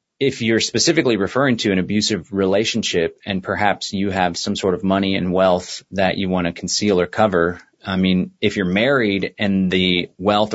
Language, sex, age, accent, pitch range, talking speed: English, male, 30-49, American, 100-130 Hz, 190 wpm